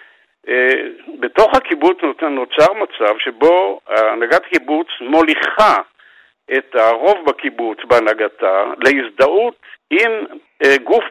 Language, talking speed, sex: Hebrew, 80 wpm, male